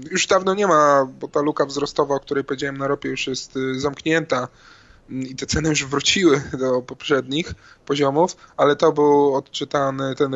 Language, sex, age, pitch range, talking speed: Polish, male, 20-39, 130-145 Hz, 170 wpm